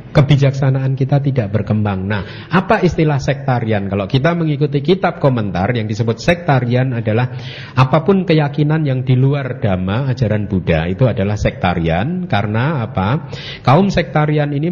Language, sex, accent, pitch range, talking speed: Indonesian, male, native, 105-140 Hz, 135 wpm